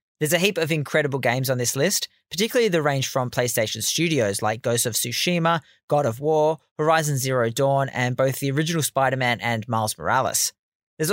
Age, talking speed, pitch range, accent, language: 20-39, 185 wpm, 115-160 Hz, Australian, English